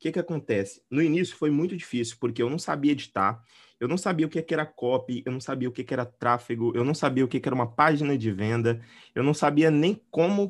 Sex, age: male, 20-39